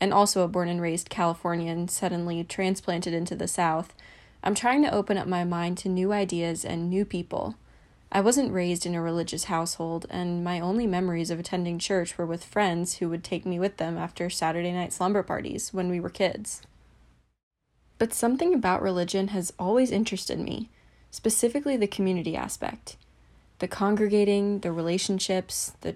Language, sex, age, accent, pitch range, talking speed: English, female, 20-39, American, 175-205 Hz, 165 wpm